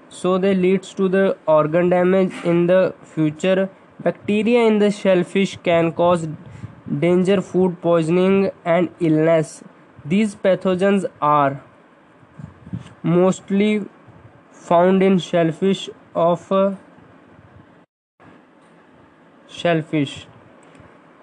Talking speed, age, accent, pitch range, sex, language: 85 wpm, 20-39, Indian, 170-195 Hz, male, English